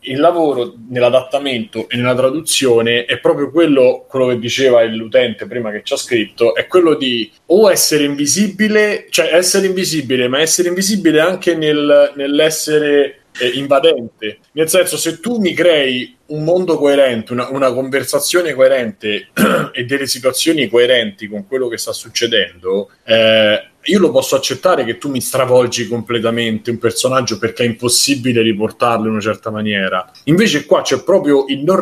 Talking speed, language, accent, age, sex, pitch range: 155 wpm, Italian, native, 20-39, male, 120-160 Hz